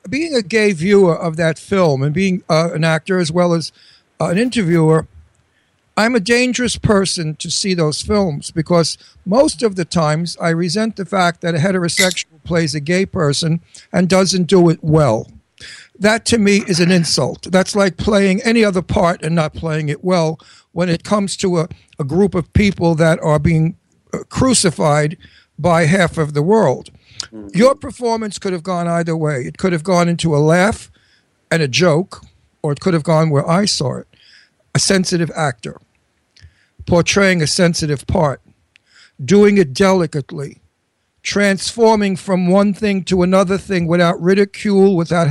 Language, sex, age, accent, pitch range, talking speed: English, male, 60-79, American, 160-195 Hz, 170 wpm